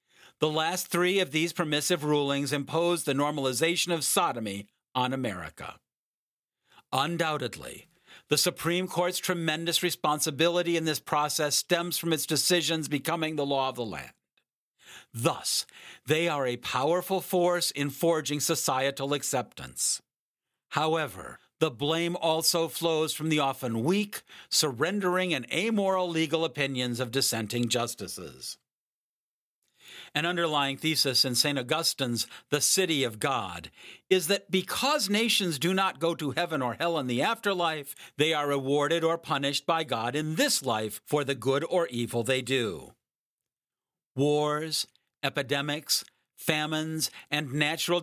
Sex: male